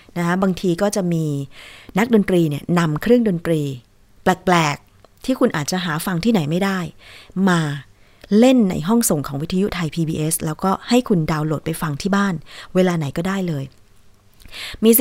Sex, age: female, 20-39